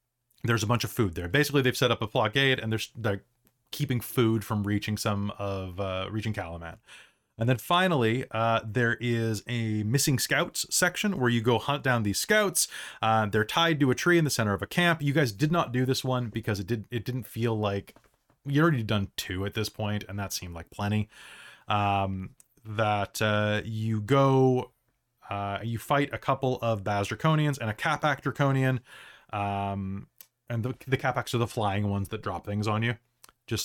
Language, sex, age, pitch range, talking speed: English, male, 20-39, 105-130 Hz, 195 wpm